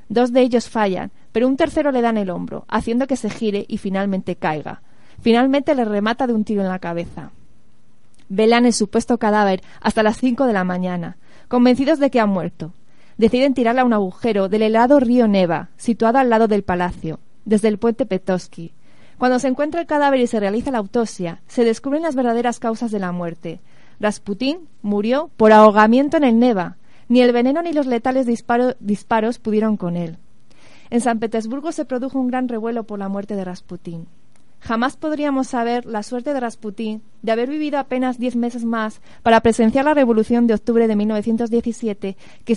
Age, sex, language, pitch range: 30-49, female, Spanish, 210-255 Hz